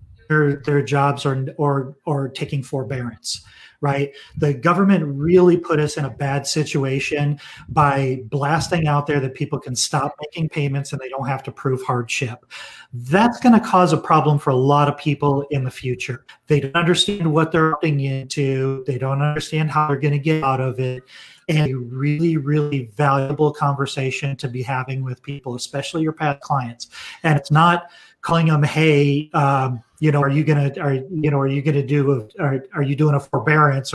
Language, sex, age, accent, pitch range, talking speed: English, male, 40-59, American, 135-155 Hz, 195 wpm